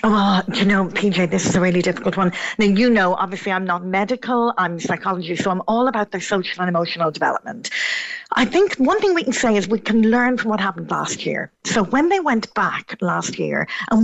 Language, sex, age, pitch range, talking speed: English, female, 40-59, 190-250 Hz, 220 wpm